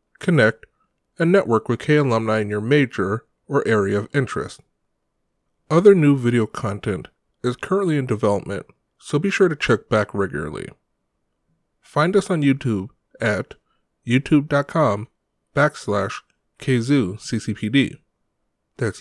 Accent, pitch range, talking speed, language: American, 110-150 Hz, 110 wpm, English